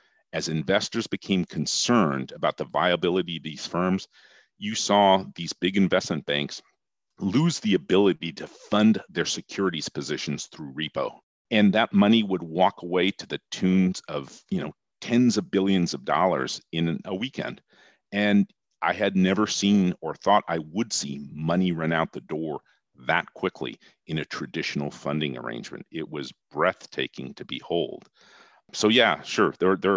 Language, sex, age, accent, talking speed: English, male, 40-59, American, 150 wpm